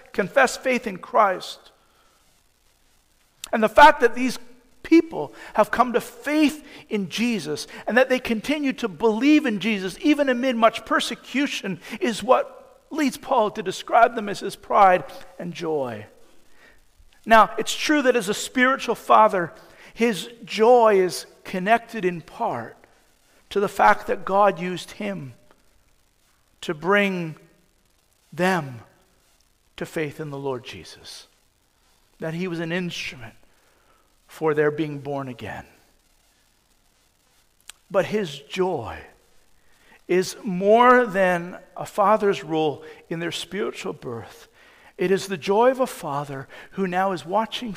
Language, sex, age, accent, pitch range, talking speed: English, male, 50-69, American, 155-235 Hz, 130 wpm